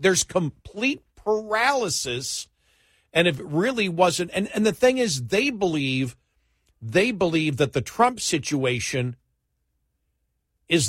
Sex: male